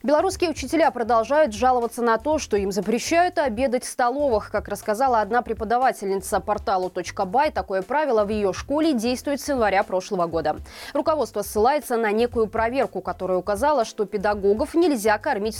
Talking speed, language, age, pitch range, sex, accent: 145 wpm, Russian, 20-39, 200-275 Hz, female, native